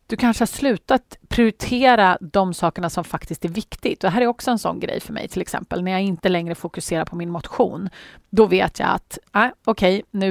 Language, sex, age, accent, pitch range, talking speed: Swedish, female, 30-49, native, 170-225 Hz, 210 wpm